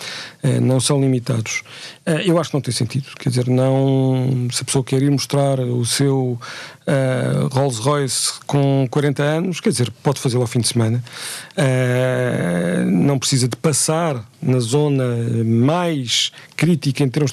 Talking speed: 150 wpm